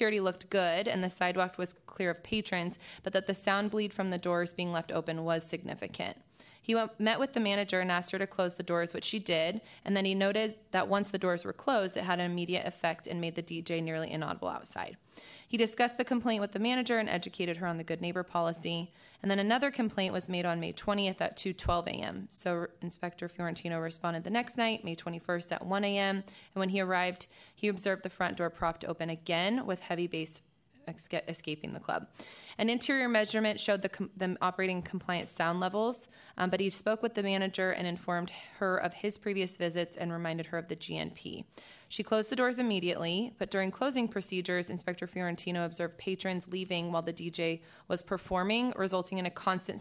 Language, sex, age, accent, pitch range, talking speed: English, female, 20-39, American, 170-200 Hz, 210 wpm